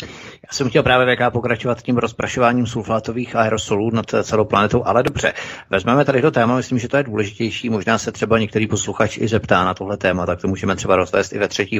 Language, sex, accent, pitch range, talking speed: Czech, male, native, 100-120 Hz, 215 wpm